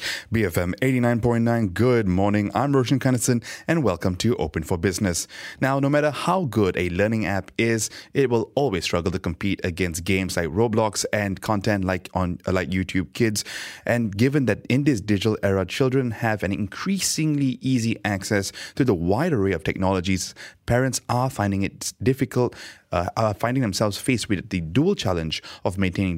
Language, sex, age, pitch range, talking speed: English, male, 20-39, 95-125 Hz, 170 wpm